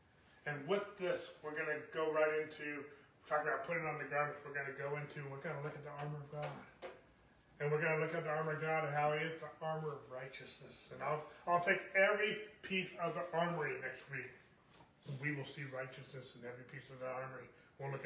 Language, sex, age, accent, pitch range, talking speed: English, male, 30-49, American, 140-165 Hz, 235 wpm